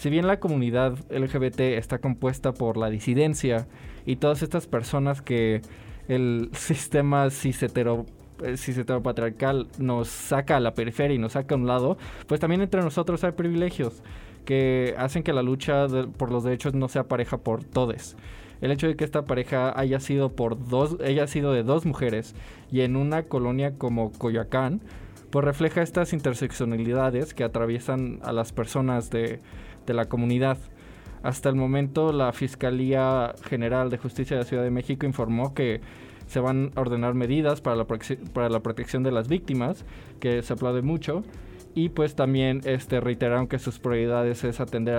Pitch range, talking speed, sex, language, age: 120-135 Hz, 165 wpm, male, English, 20-39